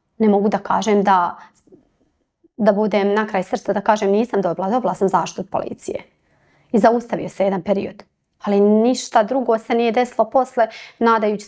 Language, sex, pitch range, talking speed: Croatian, female, 195-245 Hz, 165 wpm